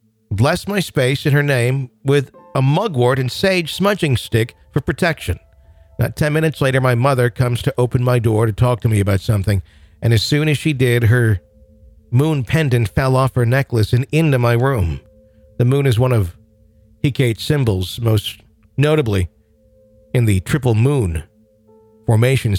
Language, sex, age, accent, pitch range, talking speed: English, male, 50-69, American, 110-135 Hz, 165 wpm